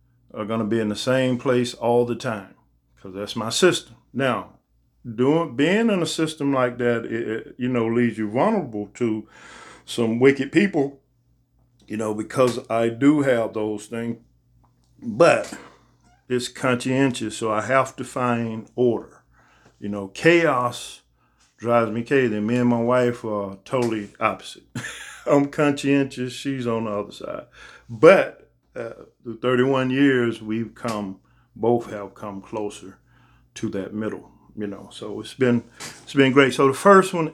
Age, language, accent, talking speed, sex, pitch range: 50-69, English, American, 155 wpm, male, 110-135 Hz